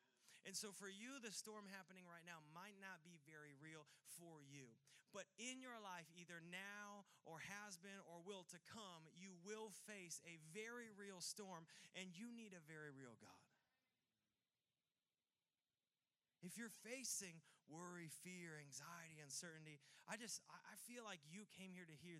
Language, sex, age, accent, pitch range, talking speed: English, male, 30-49, American, 160-210 Hz, 160 wpm